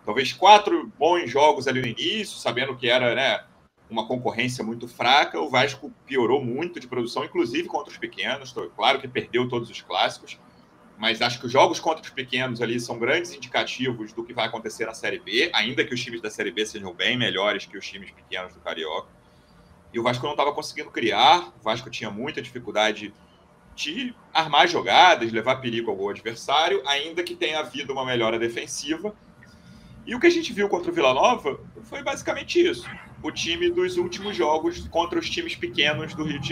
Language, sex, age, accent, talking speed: Portuguese, male, 30-49, Brazilian, 190 wpm